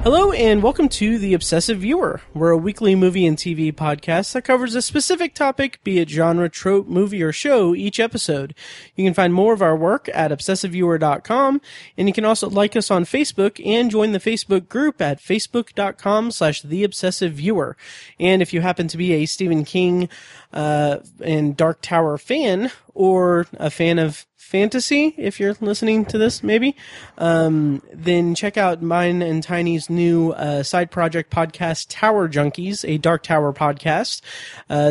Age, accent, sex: 30-49, American, male